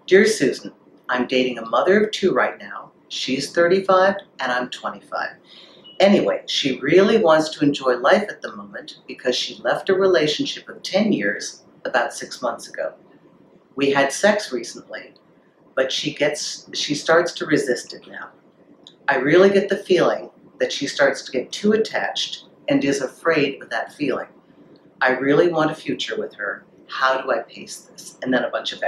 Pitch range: 145-195 Hz